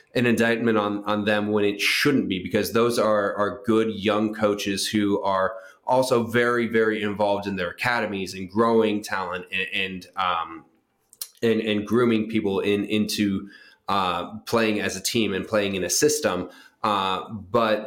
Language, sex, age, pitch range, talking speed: English, male, 20-39, 100-110 Hz, 165 wpm